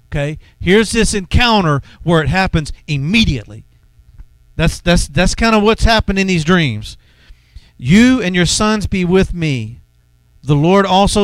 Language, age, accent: English, 50-69, American